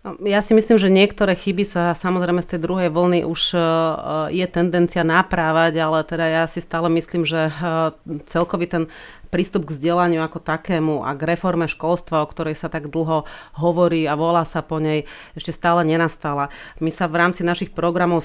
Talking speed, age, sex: 180 wpm, 30-49, female